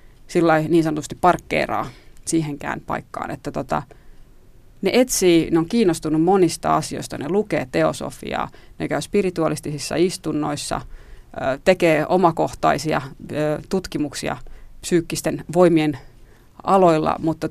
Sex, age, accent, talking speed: female, 30-49, native, 100 wpm